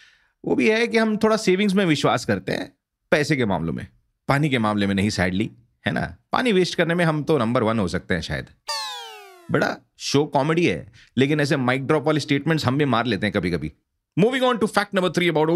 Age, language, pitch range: 40-59, Hindi, 125-195 Hz